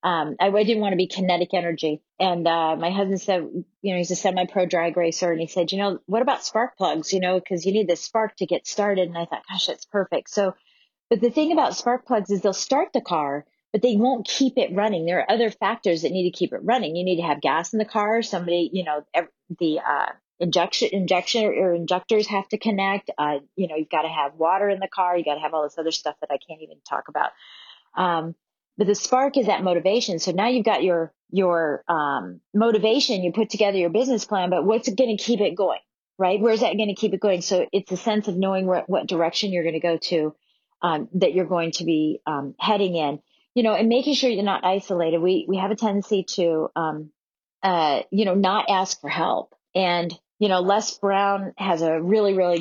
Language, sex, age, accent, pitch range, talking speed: English, female, 30-49, American, 170-210 Hz, 245 wpm